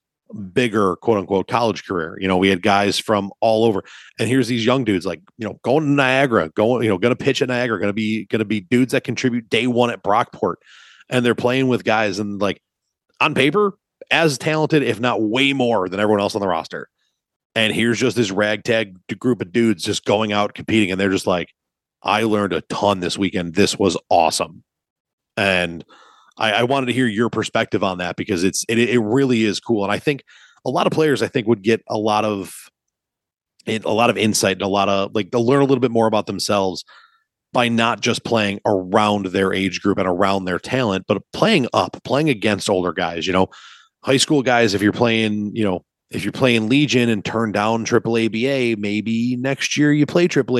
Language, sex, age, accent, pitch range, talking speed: English, male, 30-49, American, 100-125 Hz, 210 wpm